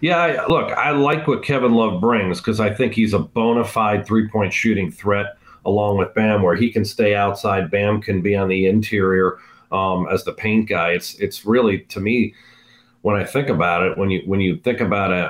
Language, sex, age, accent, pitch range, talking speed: English, male, 40-59, American, 90-110 Hz, 215 wpm